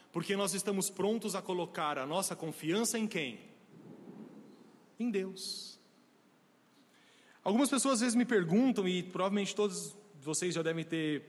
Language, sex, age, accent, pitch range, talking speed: Portuguese, male, 40-59, Brazilian, 180-260 Hz, 140 wpm